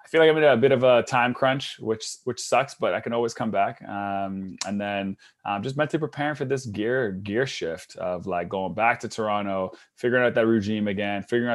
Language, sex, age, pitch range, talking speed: English, male, 20-39, 95-115 Hz, 225 wpm